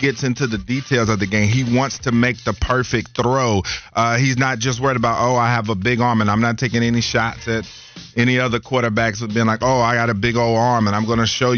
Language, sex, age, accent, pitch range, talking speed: English, male, 30-49, American, 115-130 Hz, 265 wpm